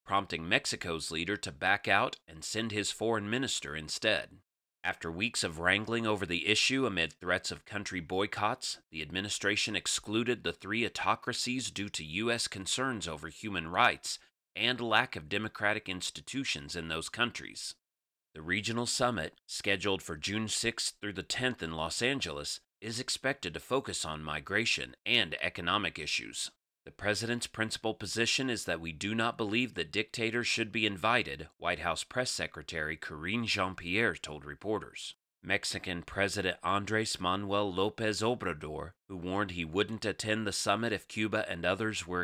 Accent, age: American, 30-49